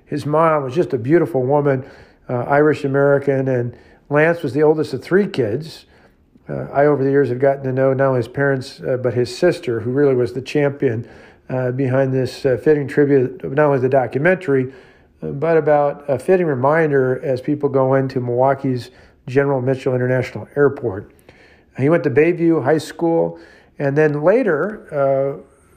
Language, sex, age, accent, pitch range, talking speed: English, male, 50-69, American, 130-145 Hz, 170 wpm